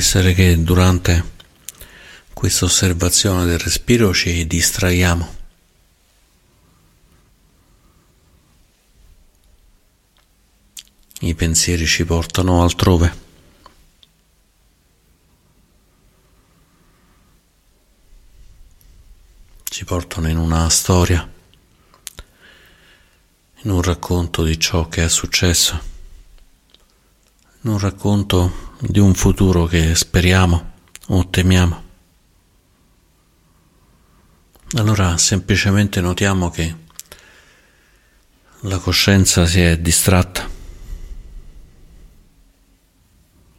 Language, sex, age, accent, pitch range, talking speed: Italian, male, 50-69, native, 80-95 Hz, 60 wpm